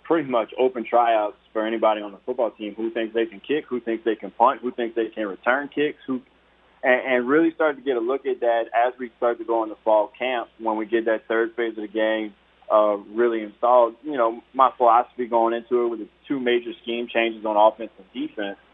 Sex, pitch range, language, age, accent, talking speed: male, 110-120 Hz, English, 20-39, American, 235 wpm